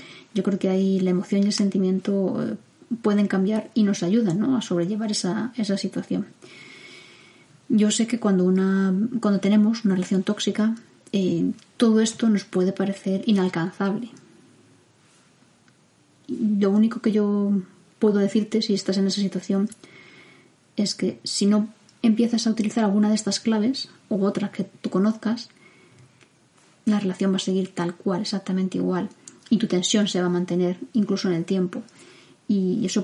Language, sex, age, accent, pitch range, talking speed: Spanish, female, 20-39, Spanish, 190-215 Hz, 155 wpm